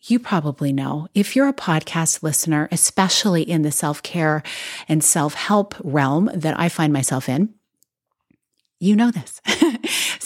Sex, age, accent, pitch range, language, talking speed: female, 30-49, American, 155-215 Hz, English, 135 wpm